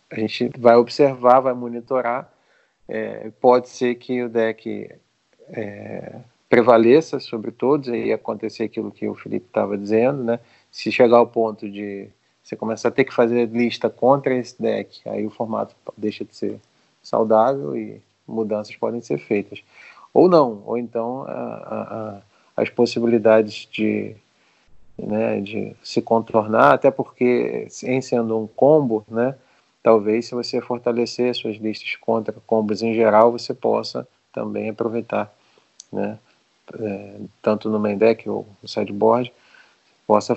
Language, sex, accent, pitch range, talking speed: Portuguese, male, Brazilian, 110-120 Hz, 145 wpm